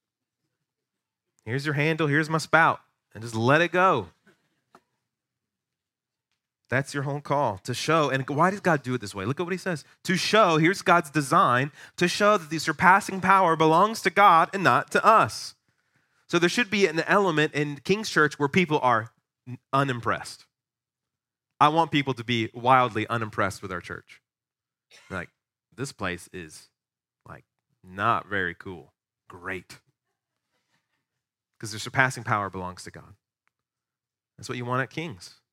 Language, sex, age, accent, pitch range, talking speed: English, male, 30-49, American, 120-160 Hz, 160 wpm